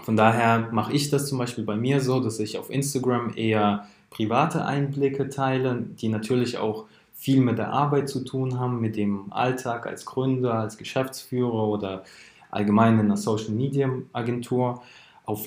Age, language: 20-39, German